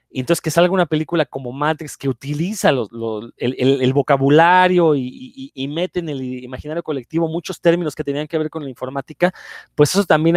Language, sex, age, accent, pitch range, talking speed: Spanish, male, 30-49, Mexican, 140-180 Hz, 210 wpm